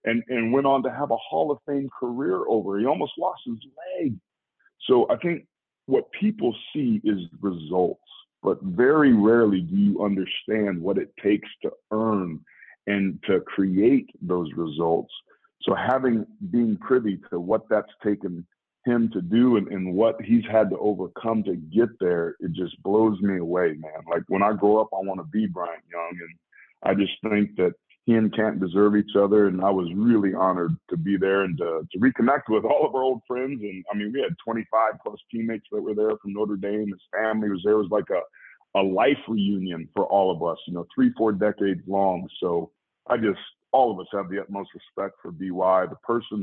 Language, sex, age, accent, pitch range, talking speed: English, male, 50-69, American, 95-115 Hz, 200 wpm